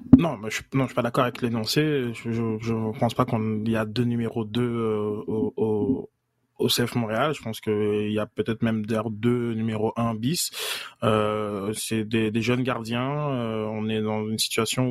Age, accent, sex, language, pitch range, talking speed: 20-39, French, male, French, 115-130 Hz, 205 wpm